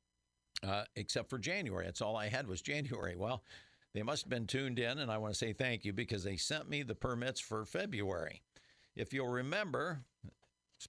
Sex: male